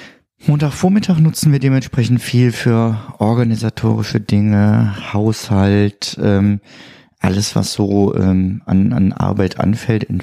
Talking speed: 110 wpm